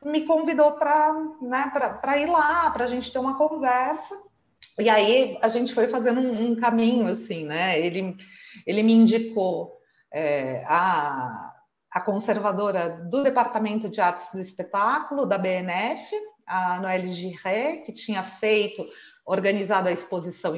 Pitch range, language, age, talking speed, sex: 210-270 Hz, Portuguese, 40-59, 145 wpm, female